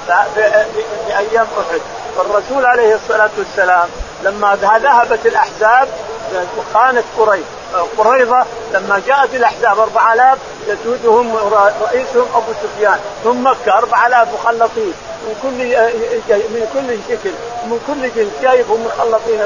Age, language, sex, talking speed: 50-69, Arabic, male, 100 wpm